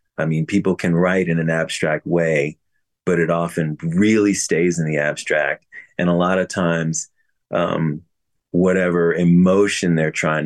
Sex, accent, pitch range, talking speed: male, American, 80-100 Hz, 155 wpm